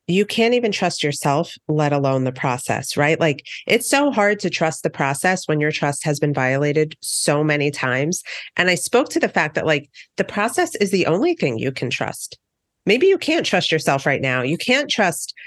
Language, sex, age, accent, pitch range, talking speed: English, female, 40-59, American, 140-180 Hz, 210 wpm